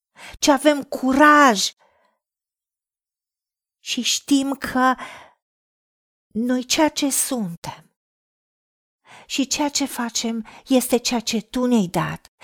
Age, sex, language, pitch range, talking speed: 40-59, female, Romanian, 230-290 Hz, 95 wpm